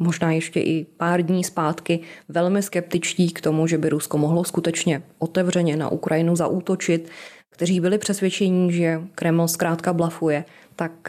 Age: 20-39